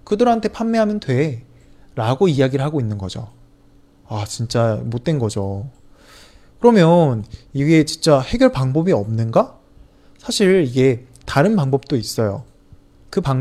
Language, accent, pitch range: Chinese, Korean, 115-175 Hz